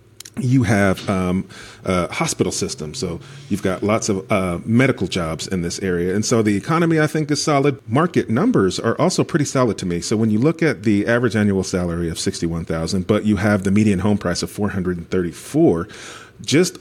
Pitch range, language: 90-115 Hz, English